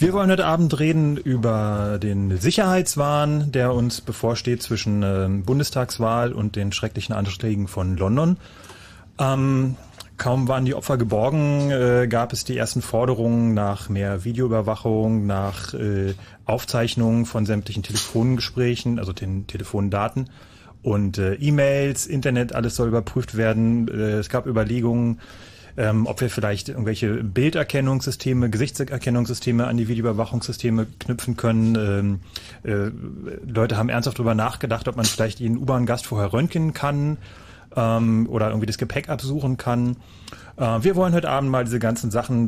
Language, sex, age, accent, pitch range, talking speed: German, male, 30-49, German, 110-130 Hz, 140 wpm